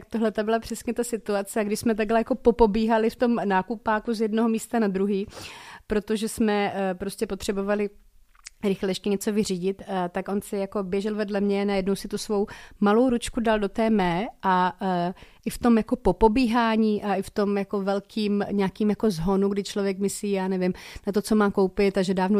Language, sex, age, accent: Czech, female, 30-49, native